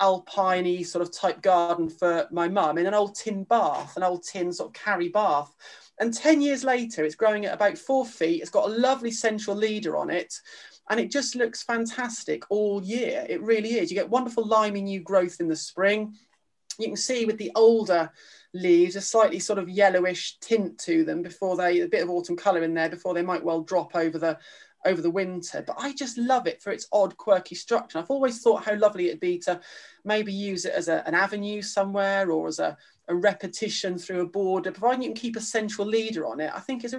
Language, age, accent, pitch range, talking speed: English, 30-49, British, 175-225 Hz, 220 wpm